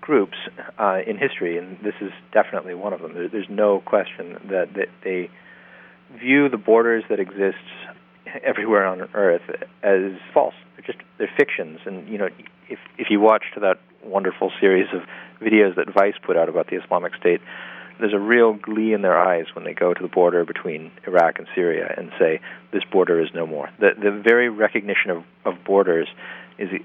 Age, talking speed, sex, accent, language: 40-59, 185 wpm, male, American, English